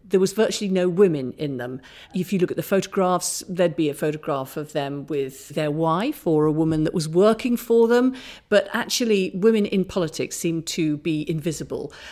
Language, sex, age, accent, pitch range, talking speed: English, female, 50-69, British, 155-190 Hz, 195 wpm